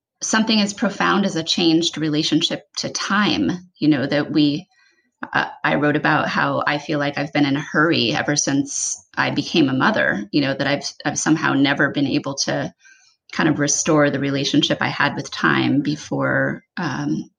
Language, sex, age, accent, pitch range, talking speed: English, female, 30-49, American, 165-220 Hz, 185 wpm